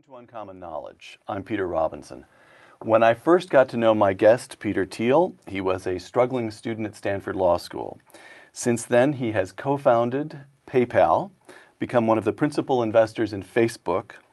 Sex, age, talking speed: male, 50-69, 165 wpm